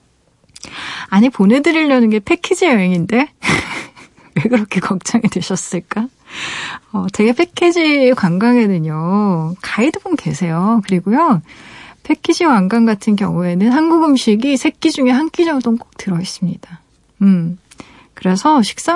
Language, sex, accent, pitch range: Korean, female, native, 185-255 Hz